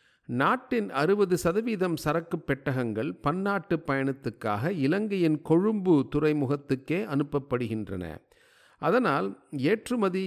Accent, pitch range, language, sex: native, 130-175 Hz, Tamil, male